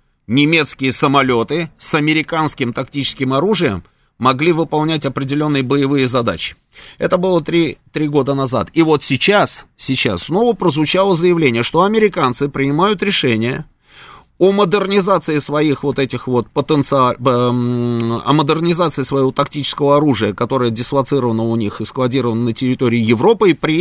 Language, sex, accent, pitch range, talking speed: Russian, male, native, 130-165 Hz, 130 wpm